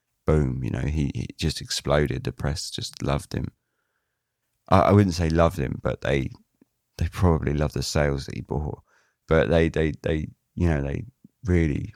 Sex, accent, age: male, British, 30-49